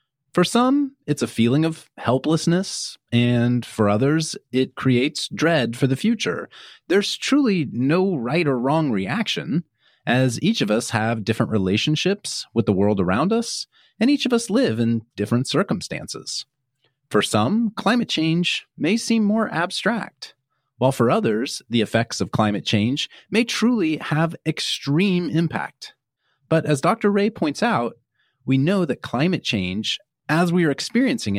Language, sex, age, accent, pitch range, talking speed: English, male, 30-49, American, 125-195 Hz, 150 wpm